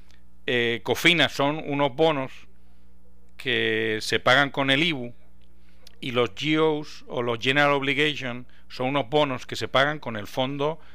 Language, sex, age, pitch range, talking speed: English, male, 40-59, 100-135 Hz, 150 wpm